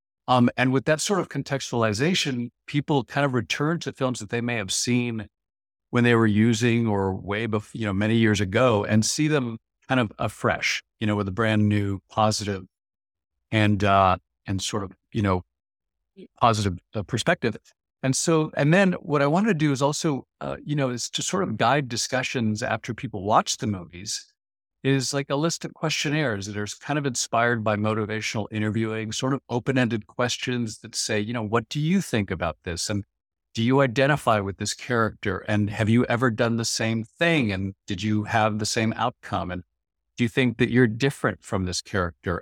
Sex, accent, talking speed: male, American, 195 wpm